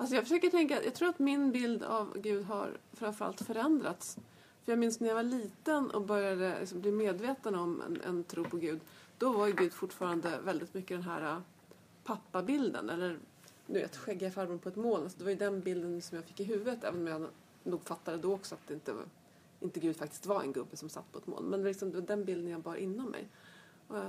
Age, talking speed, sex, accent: 30-49, 225 wpm, female, native